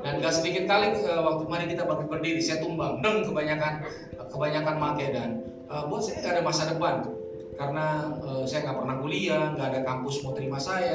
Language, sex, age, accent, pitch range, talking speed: Indonesian, male, 20-39, native, 120-165 Hz, 185 wpm